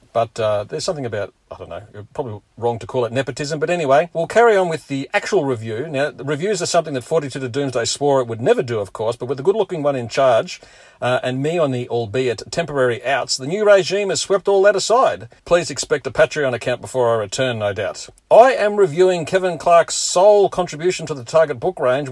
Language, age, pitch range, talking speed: English, 50-69, 125-170 Hz, 230 wpm